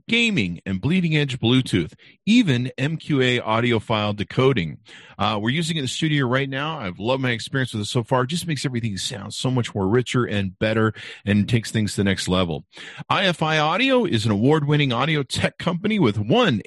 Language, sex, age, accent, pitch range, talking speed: English, male, 50-69, American, 100-150 Hz, 195 wpm